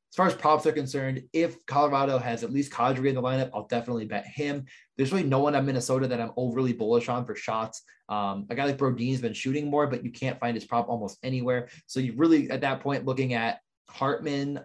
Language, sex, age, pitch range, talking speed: English, male, 20-39, 115-140 Hz, 240 wpm